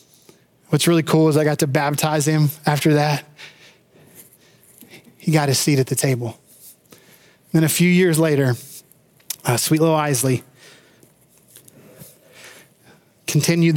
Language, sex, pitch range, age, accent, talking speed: English, male, 150-185 Hz, 20-39, American, 120 wpm